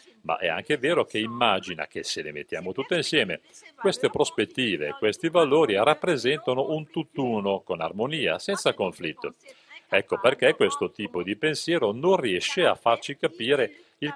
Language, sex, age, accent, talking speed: Italian, male, 50-69, native, 150 wpm